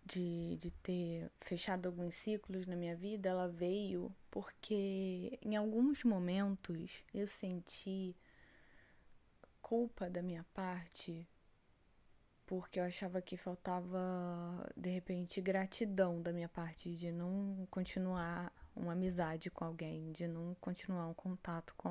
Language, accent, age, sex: Portuguese, Brazilian, 10-29, female